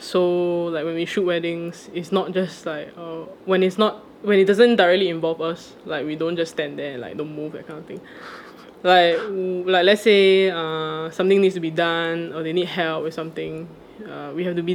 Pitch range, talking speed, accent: 165-190 Hz, 230 wpm, Malaysian